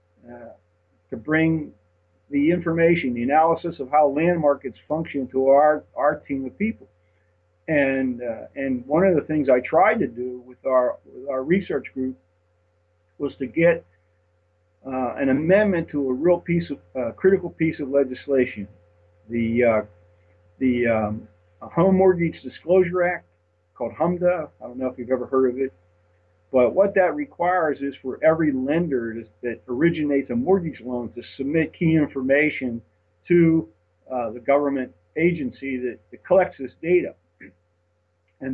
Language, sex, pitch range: English, male, 105-155 Hz